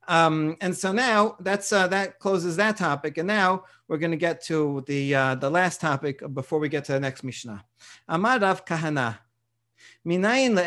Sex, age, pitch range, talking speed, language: male, 40-59, 160-200 Hz, 175 wpm, English